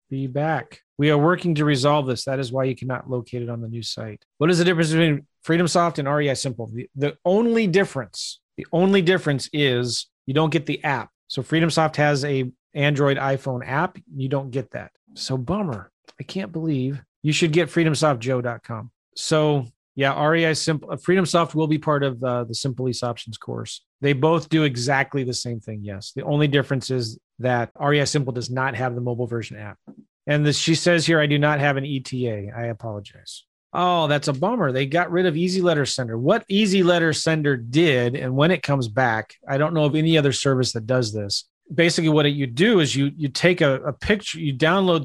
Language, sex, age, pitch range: English, male, 30-49, 125-160 Hz